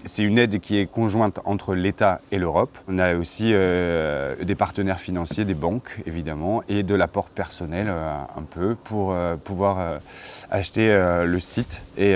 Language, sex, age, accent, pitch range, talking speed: French, male, 30-49, French, 90-105 Hz, 180 wpm